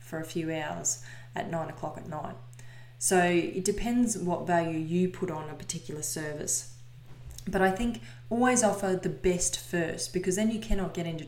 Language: English